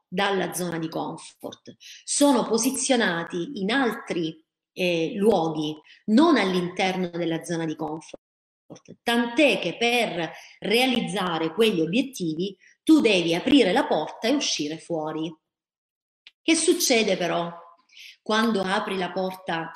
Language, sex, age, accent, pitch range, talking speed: Italian, female, 30-49, native, 170-265 Hz, 110 wpm